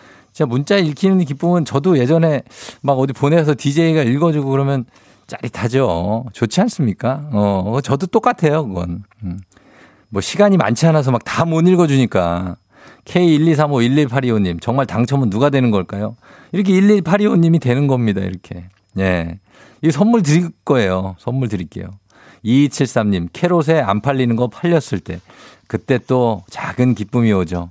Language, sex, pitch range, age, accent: Korean, male, 100-140 Hz, 50-69, native